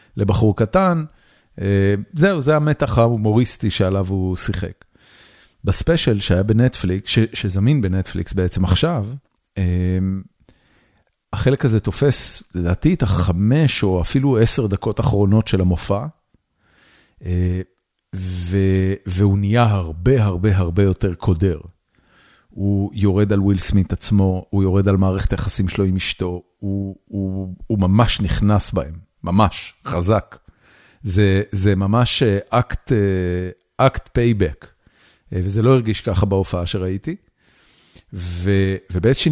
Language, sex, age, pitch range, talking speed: Hebrew, male, 40-59, 95-115 Hz, 115 wpm